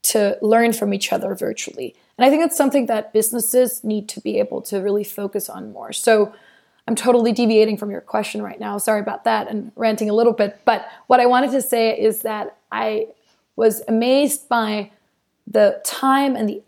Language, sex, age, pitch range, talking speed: English, female, 20-39, 215-245 Hz, 200 wpm